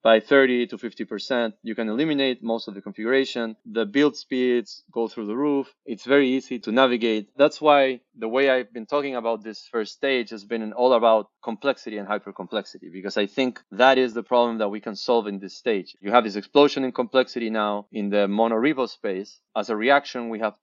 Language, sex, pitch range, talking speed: English, male, 105-130 Hz, 205 wpm